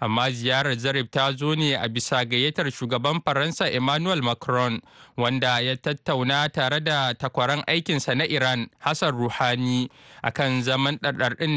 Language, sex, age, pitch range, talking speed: English, male, 20-39, 125-155 Hz, 125 wpm